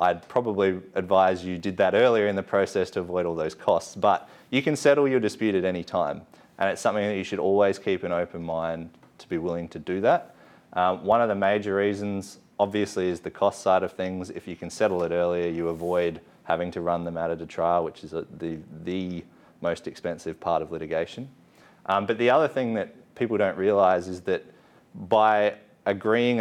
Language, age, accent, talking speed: English, 30-49, Australian, 205 wpm